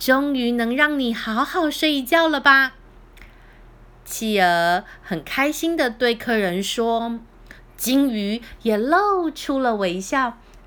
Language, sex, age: Chinese, female, 20-39